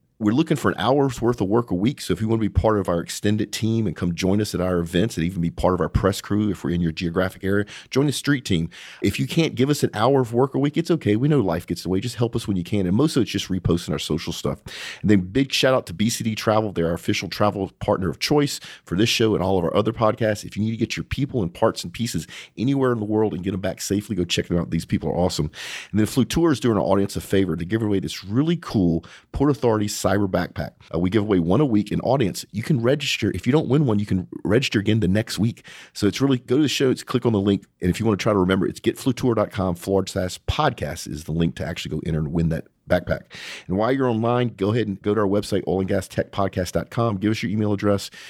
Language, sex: English, male